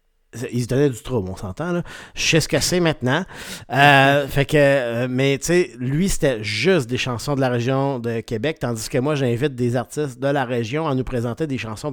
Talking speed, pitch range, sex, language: 225 wpm, 120-155 Hz, male, French